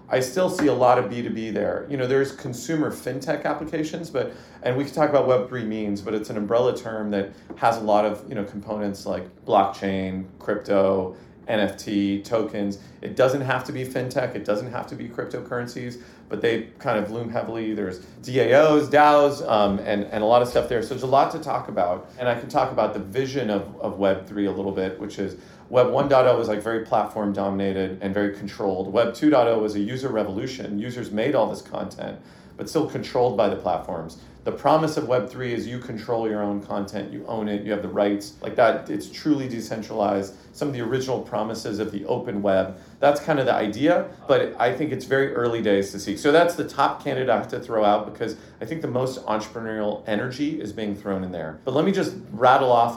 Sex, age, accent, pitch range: male, 40-59, American, 100-125 Hz